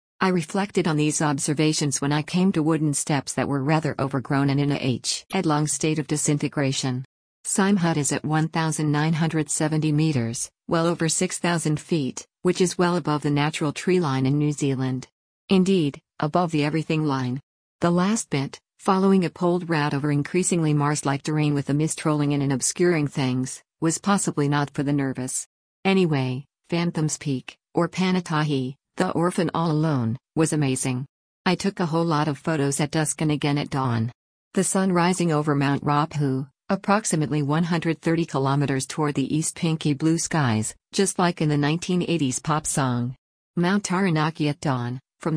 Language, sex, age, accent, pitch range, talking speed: English, female, 50-69, American, 140-170 Hz, 165 wpm